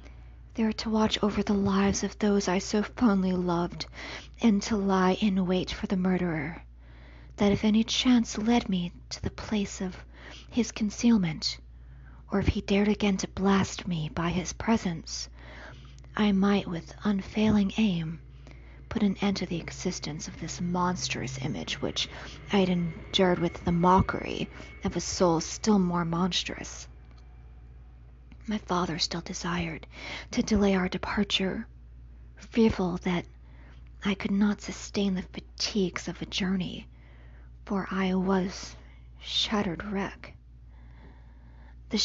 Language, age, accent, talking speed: English, 40-59, American, 135 wpm